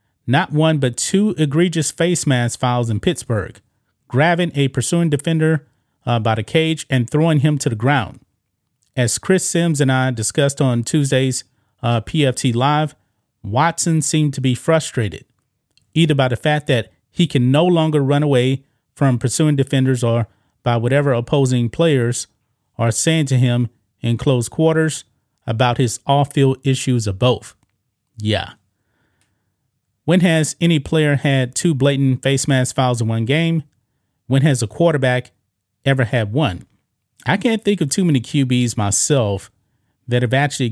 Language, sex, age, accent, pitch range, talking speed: English, male, 30-49, American, 115-145 Hz, 155 wpm